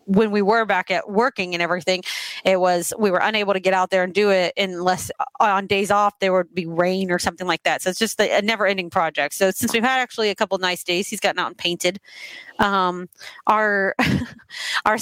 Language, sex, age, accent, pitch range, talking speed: English, female, 30-49, American, 180-220 Hz, 225 wpm